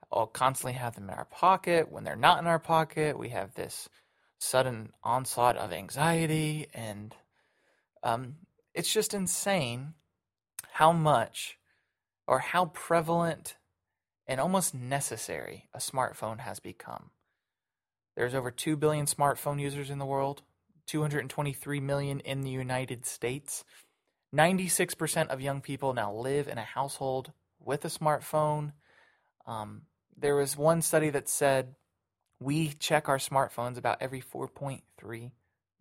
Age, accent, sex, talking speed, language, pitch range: 20-39, American, male, 130 wpm, English, 130-160 Hz